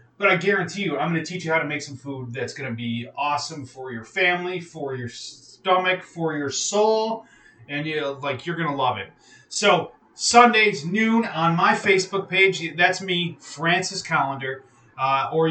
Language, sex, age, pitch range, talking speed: English, male, 30-49, 135-180 Hz, 190 wpm